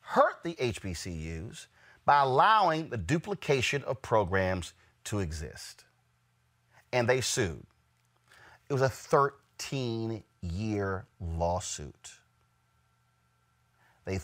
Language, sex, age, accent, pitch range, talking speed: English, male, 40-59, American, 95-145 Hz, 85 wpm